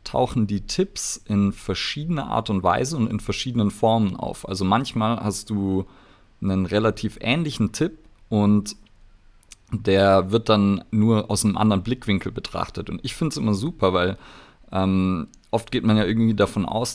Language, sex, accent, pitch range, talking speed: German, male, German, 95-115 Hz, 165 wpm